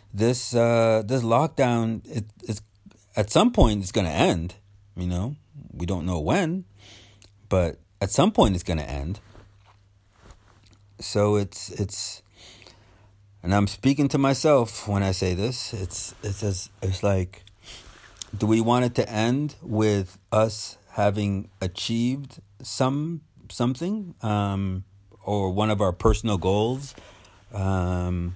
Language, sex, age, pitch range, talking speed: English, male, 30-49, 95-115 Hz, 130 wpm